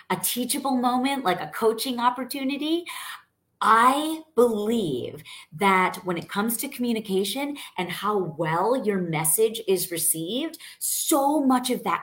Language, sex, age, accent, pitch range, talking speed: English, female, 30-49, American, 185-260 Hz, 130 wpm